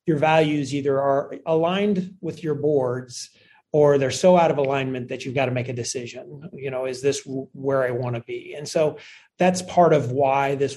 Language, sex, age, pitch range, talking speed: English, male, 30-49, 140-175 Hz, 205 wpm